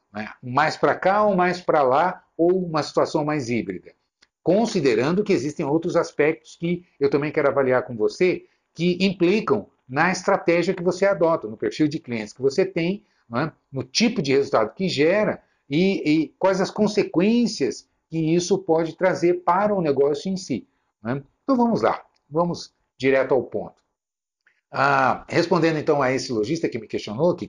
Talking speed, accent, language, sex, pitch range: 165 wpm, Brazilian, Portuguese, male, 135-180 Hz